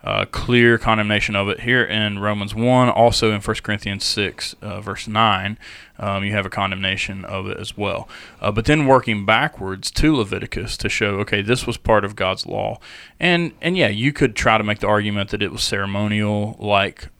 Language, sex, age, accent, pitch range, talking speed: English, male, 30-49, American, 100-115 Hz, 195 wpm